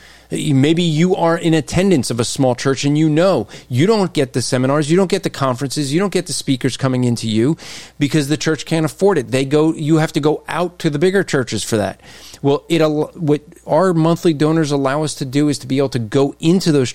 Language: English